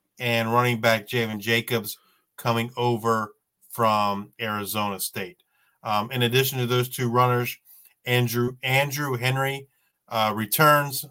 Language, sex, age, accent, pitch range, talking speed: English, male, 40-59, American, 110-130 Hz, 120 wpm